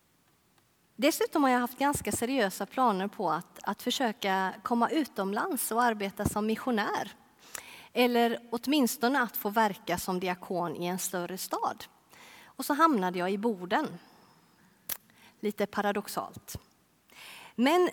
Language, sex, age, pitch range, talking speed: Swedish, female, 30-49, 185-245 Hz, 125 wpm